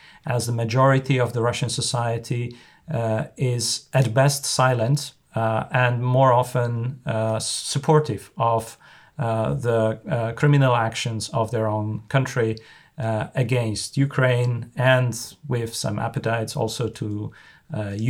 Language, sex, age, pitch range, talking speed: English, male, 40-59, 110-135 Hz, 125 wpm